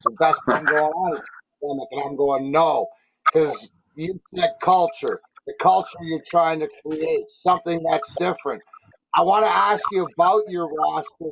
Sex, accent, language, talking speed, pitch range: male, American, English, 165 wpm, 165-200 Hz